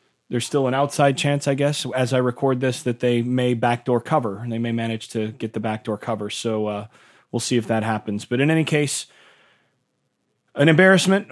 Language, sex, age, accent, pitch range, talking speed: English, male, 30-49, American, 120-145 Hz, 200 wpm